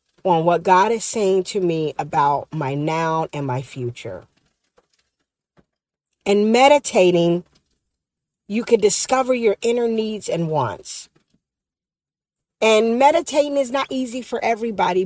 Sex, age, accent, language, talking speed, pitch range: female, 50-69, American, English, 120 wpm, 165-230 Hz